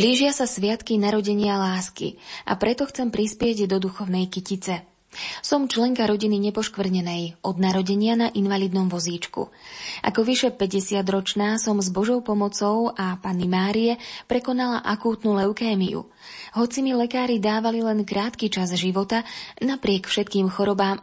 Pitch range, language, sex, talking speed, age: 190-230 Hz, Slovak, female, 130 wpm, 20-39